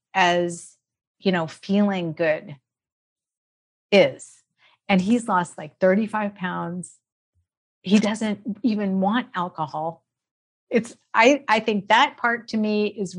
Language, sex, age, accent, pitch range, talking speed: English, female, 40-59, American, 175-215 Hz, 120 wpm